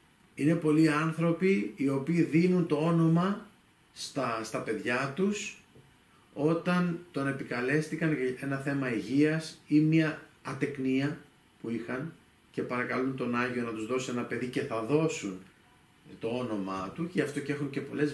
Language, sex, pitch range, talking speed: Greek, male, 120-170 Hz, 150 wpm